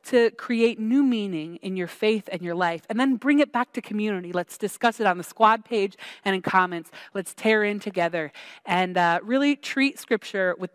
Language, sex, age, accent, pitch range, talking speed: English, female, 30-49, American, 185-255 Hz, 205 wpm